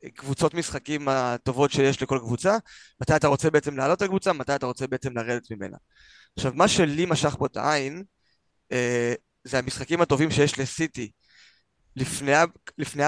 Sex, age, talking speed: male, 20-39, 150 wpm